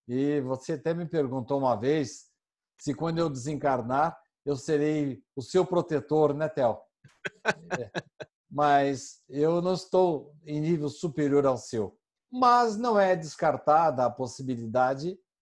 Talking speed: 130 wpm